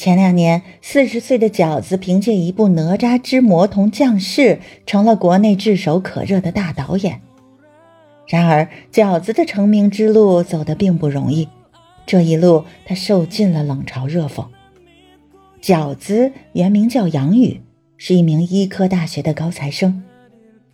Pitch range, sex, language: 155-210 Hz, female, Chinese